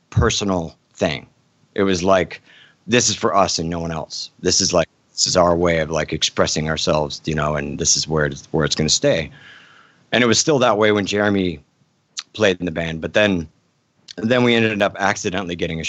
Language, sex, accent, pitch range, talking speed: English, male, American, 90-110 Hz, 215 wpm